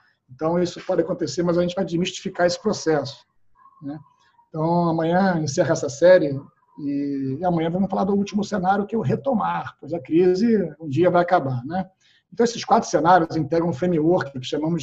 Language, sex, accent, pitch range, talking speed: Portuguese, male, Brazilian, 145-180 Hz, 190 wpm